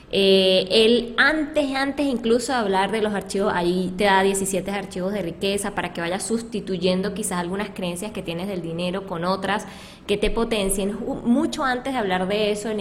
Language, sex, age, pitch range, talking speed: Spanish, female, 20-39, 190-225 Hz, 185 wpm